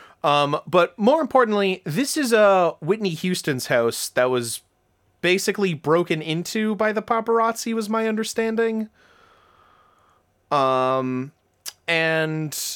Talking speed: 115 wpm